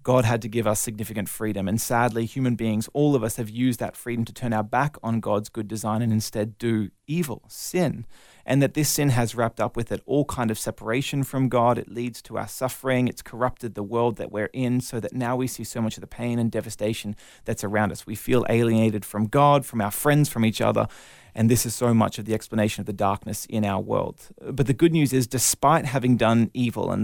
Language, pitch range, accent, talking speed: English, 110-130 Hz, Australian, 240 wpm